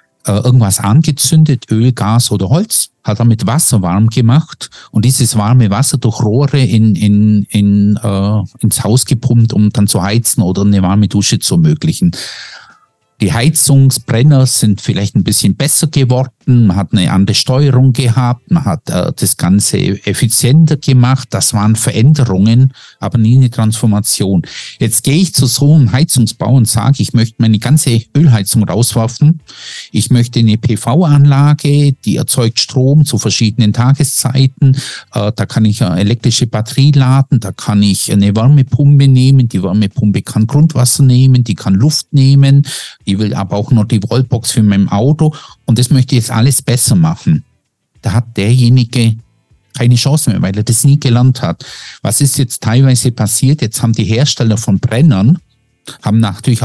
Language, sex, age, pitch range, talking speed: German, male, 50-69, 110-140 Hz, 160 wpm